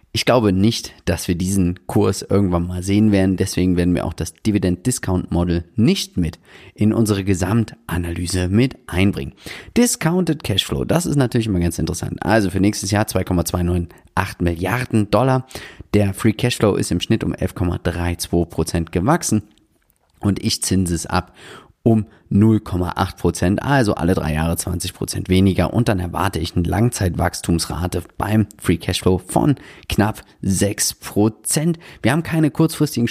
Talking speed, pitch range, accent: 140 wpm, 90-115 Hz, German